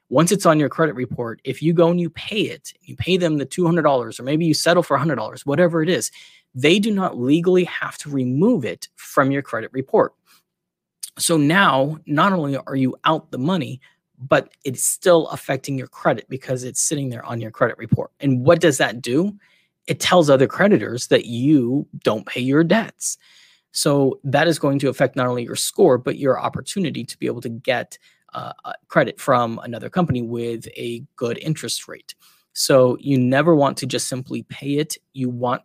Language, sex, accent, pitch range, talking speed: English, male, American, 125-160 Hz, 195 wpm